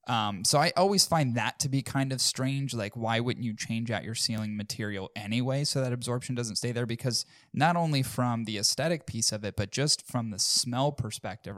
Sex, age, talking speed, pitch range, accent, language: male, 20-39, 220 wpm, 110-135 Hz, American, English